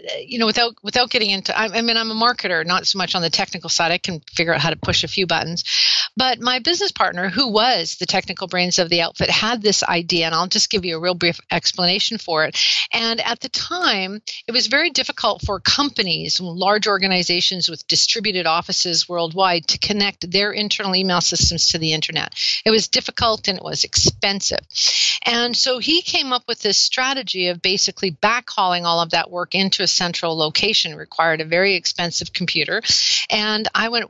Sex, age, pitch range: female, 50-69, 180-230 Hz